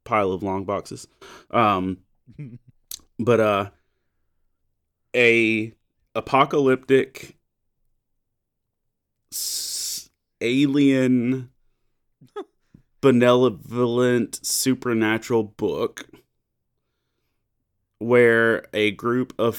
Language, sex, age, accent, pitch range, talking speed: English, male, 30-49, American, 95-120 Hz, 50 wpm